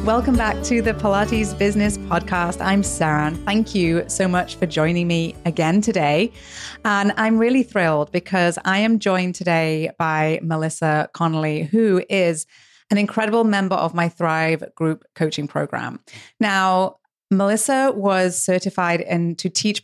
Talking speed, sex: 145 wpm, female